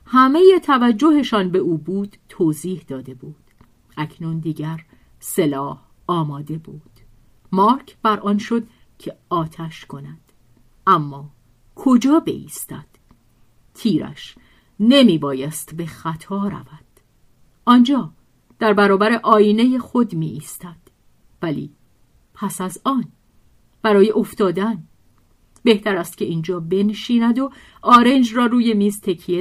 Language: Persian